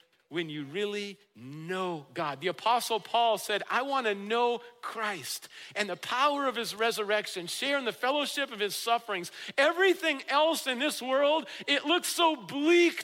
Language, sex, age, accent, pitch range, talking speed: English, male, 50-69, American, 175-290 Hz, 160 wpm